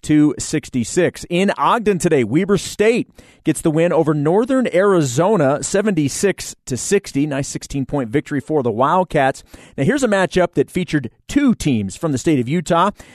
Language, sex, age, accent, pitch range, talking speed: English, male, 40-59, American, 135-175 Hz, 140 wpm